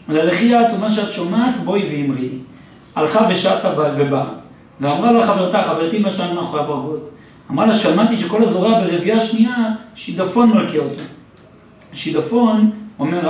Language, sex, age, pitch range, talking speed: Hebrew, male, 40-59, 165-220 Hz, 120 wpm